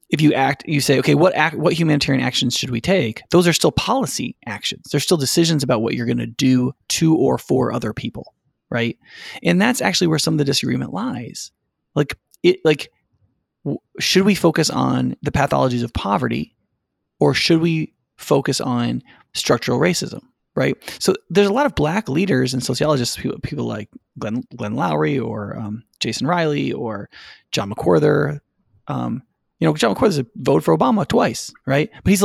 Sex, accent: male, American